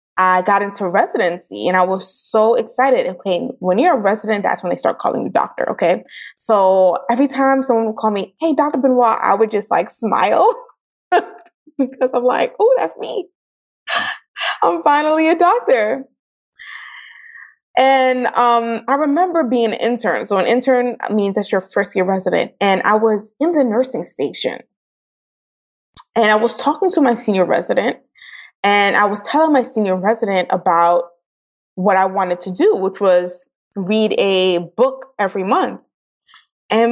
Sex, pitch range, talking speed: female, 200-275 Hz, 160 wpm